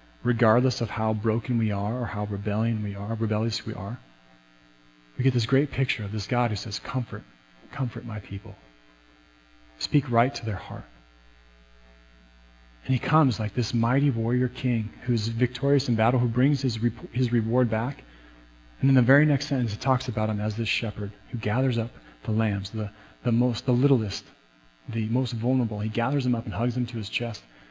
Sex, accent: male, American